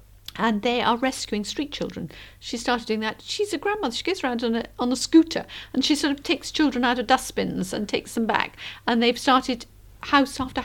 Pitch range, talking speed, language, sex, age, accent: 195-260 Hz, 215 wpm, English, female, 50-69, British